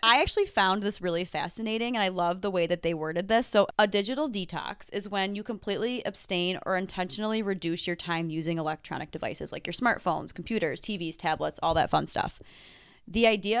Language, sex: English, female